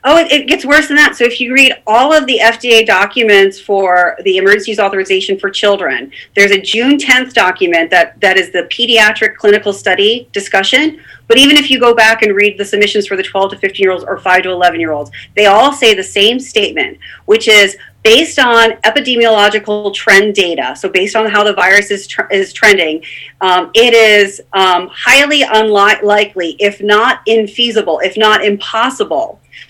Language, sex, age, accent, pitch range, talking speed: English, female, 30-49, American, 195-245 Hz, 180 wpm